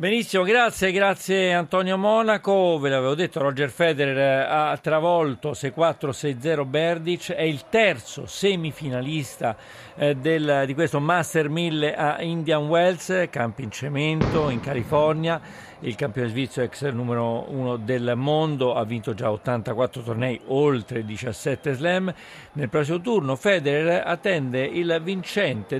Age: 50-69